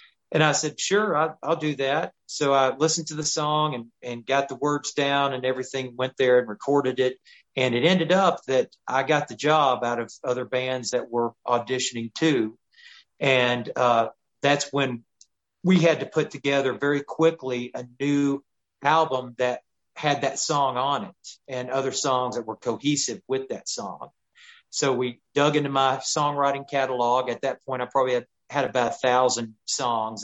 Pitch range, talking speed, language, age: 125-145 Hz, 180 wpm, English, 40-59